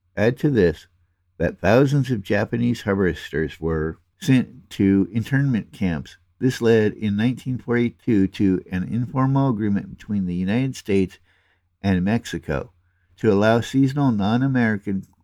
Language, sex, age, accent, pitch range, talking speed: English, male, 60-79, American, 90-115 Hz, 120 wpm